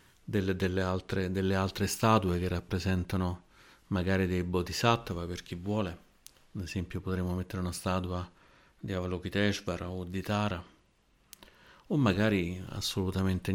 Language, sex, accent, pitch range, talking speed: Italian, male, native, 90-100 Hz, 125 wpm